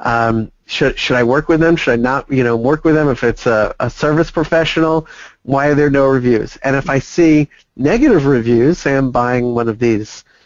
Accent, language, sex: American, English, male